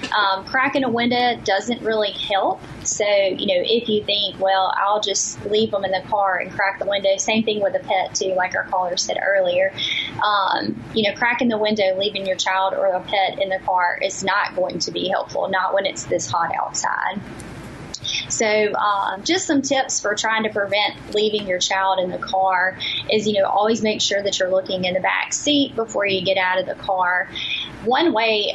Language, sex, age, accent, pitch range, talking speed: English, female, 20-39, American, 195-240 Hz, 210 wpm